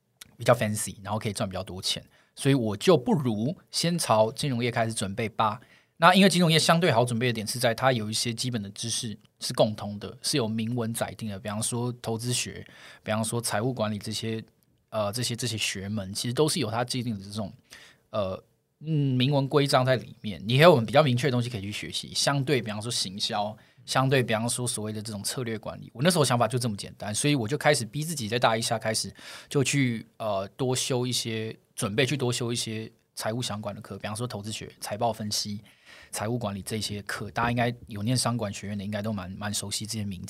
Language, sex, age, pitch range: Chinese, male, 20-39, 105-130 Hz